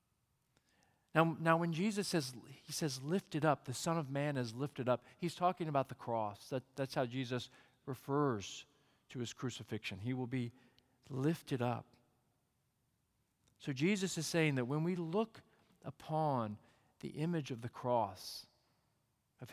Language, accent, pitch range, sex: English, American, 120-160 Hz, male